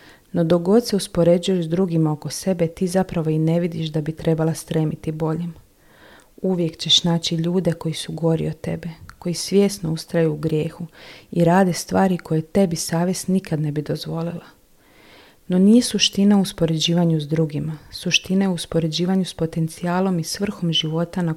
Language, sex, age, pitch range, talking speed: Croatian, female, 40-59, 160-185 Hz, 155 wpm